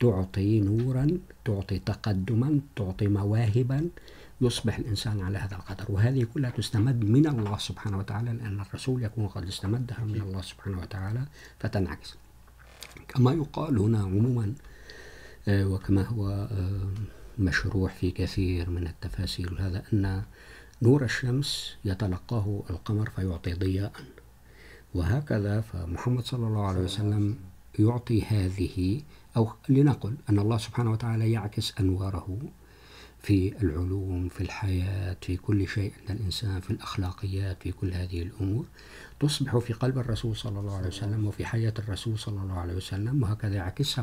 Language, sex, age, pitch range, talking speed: Urdu, male, 50-69, 95-115 Hz, 130 wpm